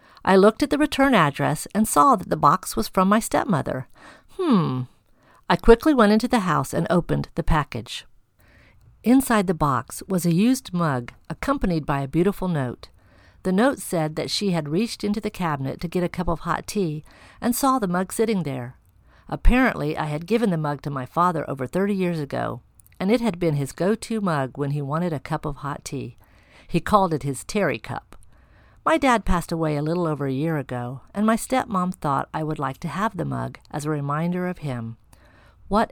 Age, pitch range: 50-69, 130-190 Hz